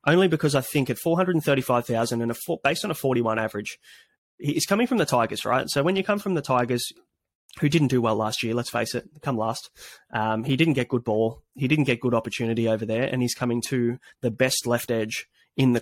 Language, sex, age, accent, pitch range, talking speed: English, male, 20-39, Australian, 115-135 Hz, 230 wpm